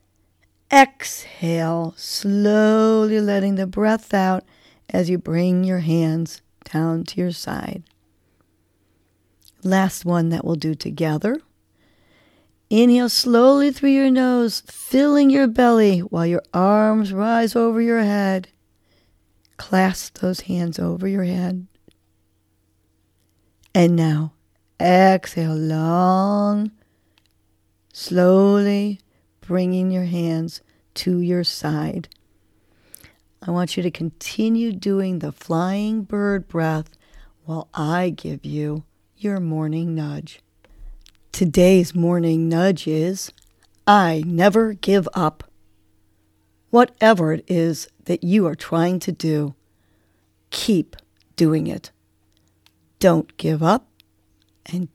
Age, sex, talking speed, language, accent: 50-69, female, 105 wpm, English, American